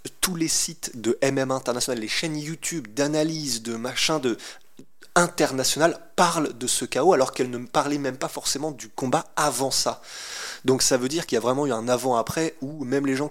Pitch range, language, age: 115-145 Hz, French, 20-39